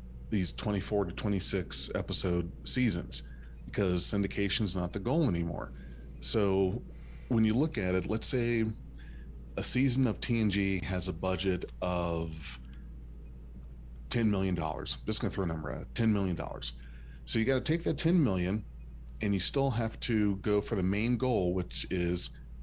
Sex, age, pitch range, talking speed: male, 40-59, 70-105 Hz, 160 wpm